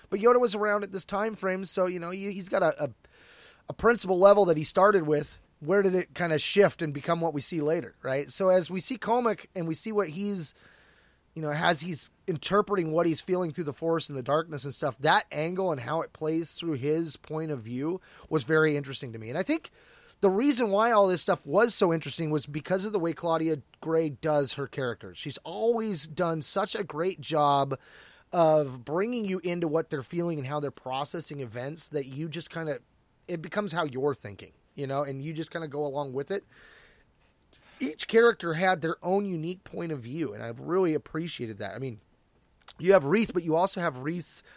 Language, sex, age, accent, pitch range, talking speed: English, male, 30-49, American, 145-185 Hz, 220 wpm